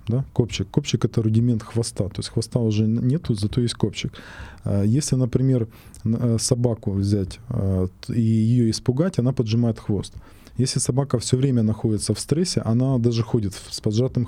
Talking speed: 155 wpm